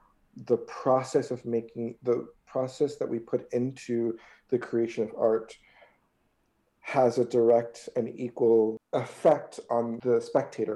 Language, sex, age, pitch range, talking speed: English, male, 40-59, 115-140 Hz, 130 wpm